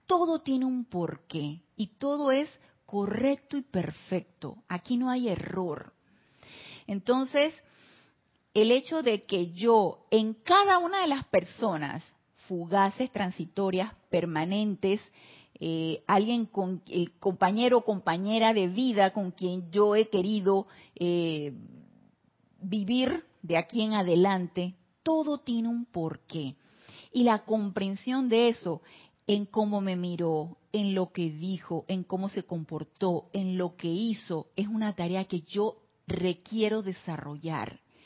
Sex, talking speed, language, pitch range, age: female, 130 wpm, Spanish, 175-225 Hz, 40-59